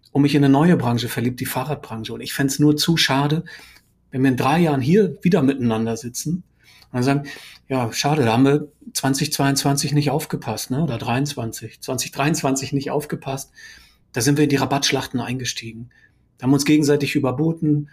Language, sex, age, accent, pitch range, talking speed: German, male, 40-59, German, 130-150 Hz, 185 wpm